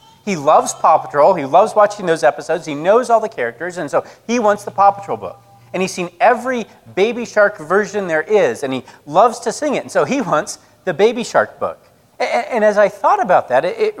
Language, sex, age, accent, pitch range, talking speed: English, male, 40-59, American, 165-230 Hz, 225 wpm